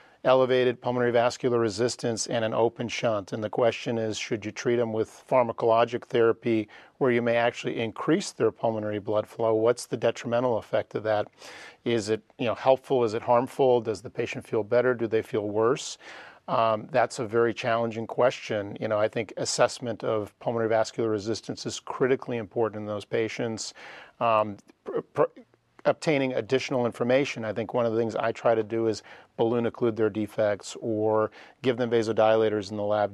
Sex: male